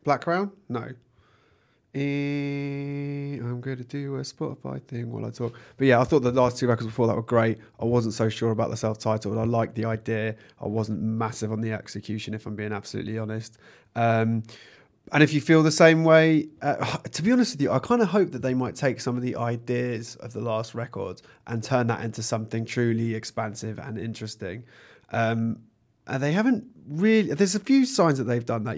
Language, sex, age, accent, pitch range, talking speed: English, male, 20-39, British, 110-140 Hz, 205 wpm